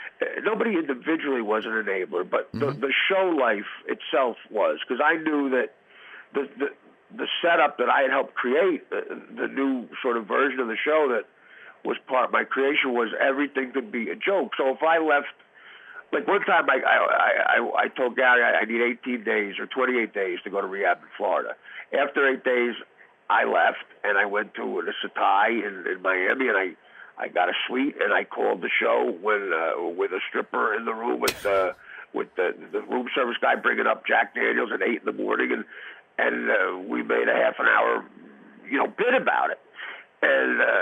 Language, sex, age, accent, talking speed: English, male, 50-69, American, 205 wpm